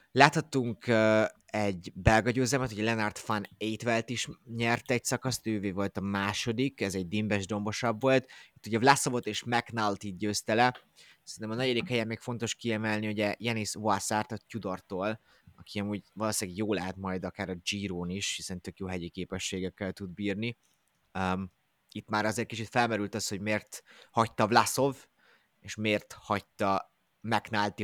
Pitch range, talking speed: 95-115 Hz, 155 wpm